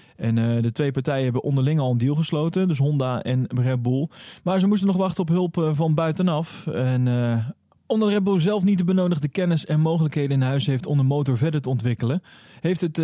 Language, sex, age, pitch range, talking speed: Dutch, male, 20-39, 125-160 Hz, 225 wpm